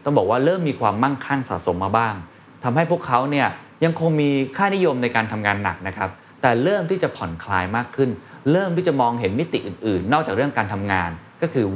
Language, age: Thai, 20-39